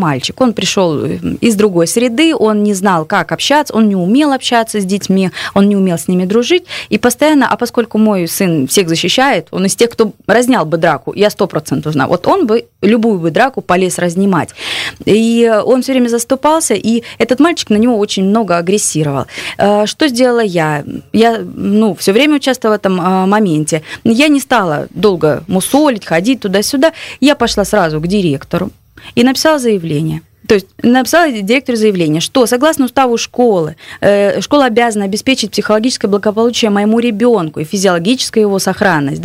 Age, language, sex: 20-39, Russian, female